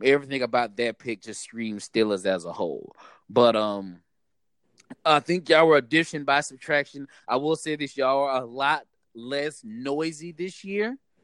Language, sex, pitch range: English, male, 135-160 Hz